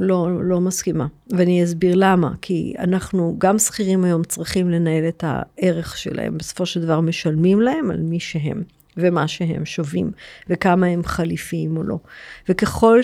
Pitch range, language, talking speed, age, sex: 165-195 Hz, Hebrew, 150 wpm, 50-69, female